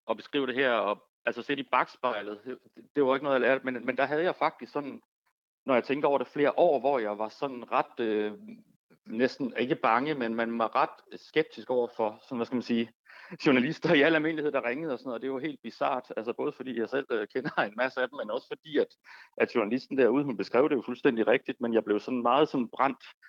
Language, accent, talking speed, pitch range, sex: Danish, native, 250 wpm, 110-130 Hz, male